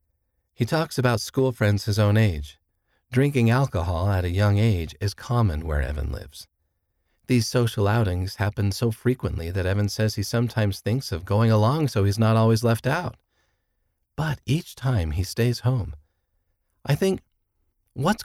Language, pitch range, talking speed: English, 80-120 Hz, 160 wpm